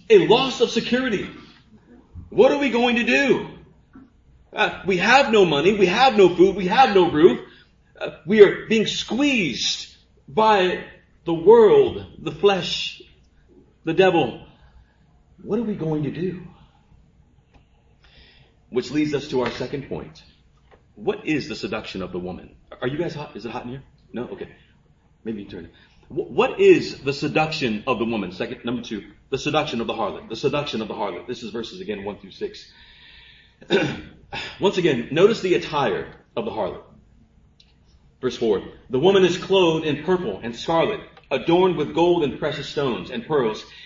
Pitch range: 135-190 Hz